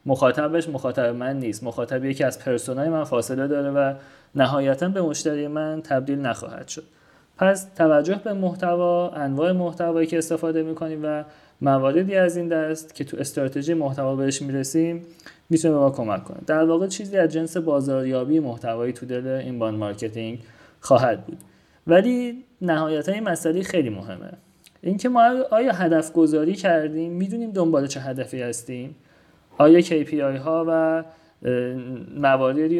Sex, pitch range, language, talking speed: male, 135-175 Hz, Persian, 140 wpm